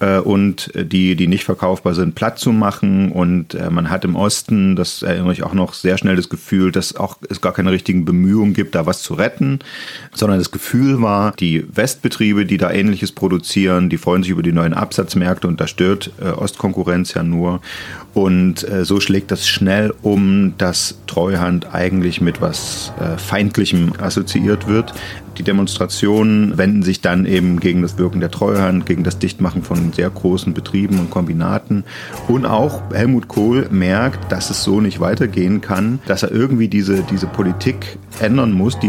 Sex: male